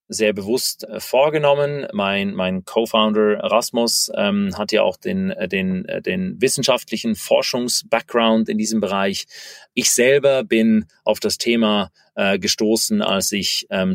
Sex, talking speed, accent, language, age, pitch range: male, 130 wpm, German, German, 30-49, 100-130 Hz